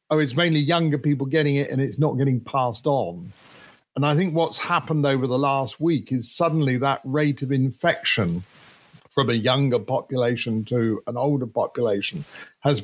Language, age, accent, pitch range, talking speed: English, 50-69, British, 120-150 Hz, 175 wpm